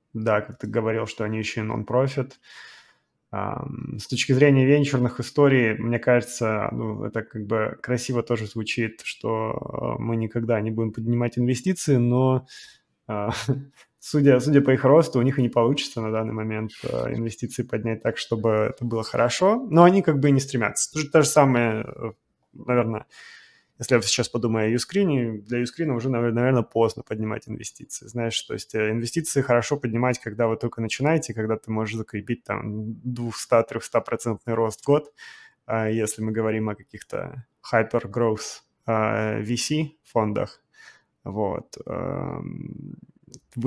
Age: 20-39